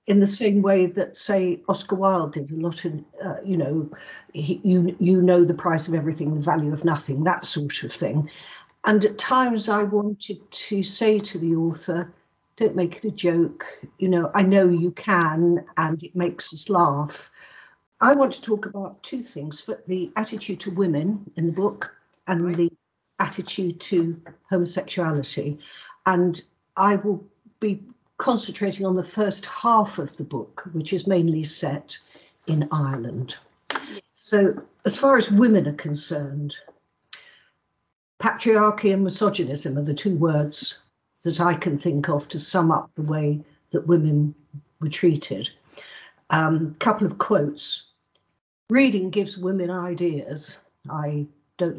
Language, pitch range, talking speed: English, 155-200 Hz, 155 wpm